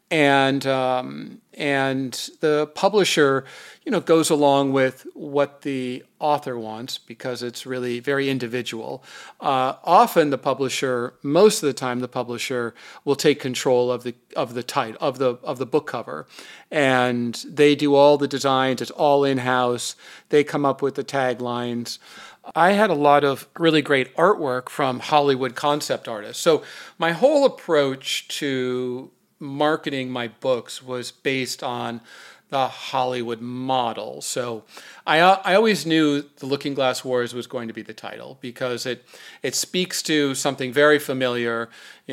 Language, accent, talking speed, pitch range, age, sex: English, American, 155 wpm, 125-150 Hz, 50-69, male